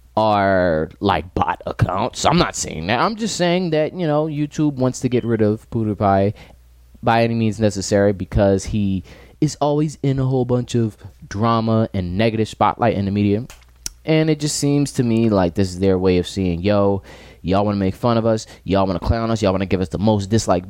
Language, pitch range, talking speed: English, 95-130 Hz, 215 wpm